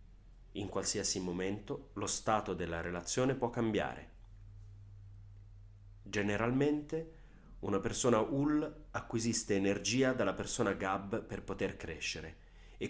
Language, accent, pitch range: Italian, native, 95-115 Hz